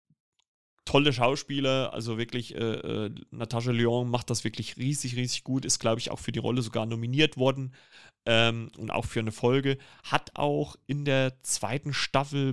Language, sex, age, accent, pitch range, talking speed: German, male, 30-49, German, 115-135 Hz, 170 wpm